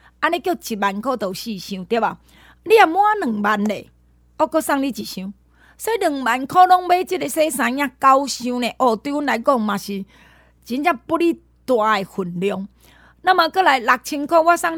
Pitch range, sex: 220-315 Hz, female